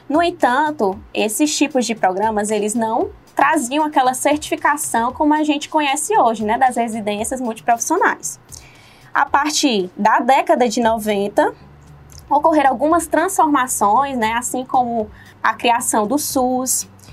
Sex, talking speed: female, 125 wpm